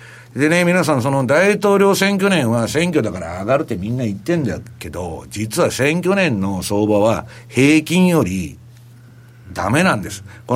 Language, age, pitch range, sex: Japanese, 60-79, 115-170 Hz, male